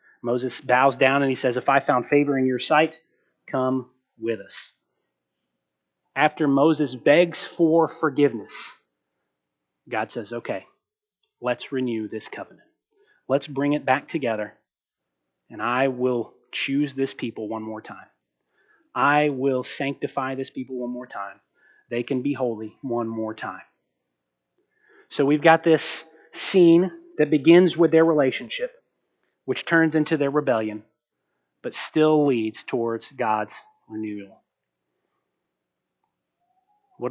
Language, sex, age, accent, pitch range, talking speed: English, male, 30-49, American, 120-165 Hz, 130 wpm